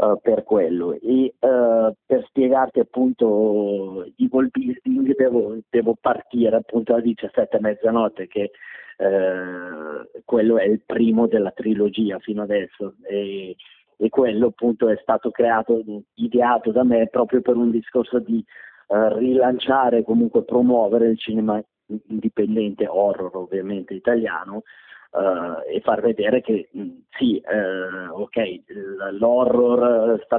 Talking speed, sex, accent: 115 wpm, male, native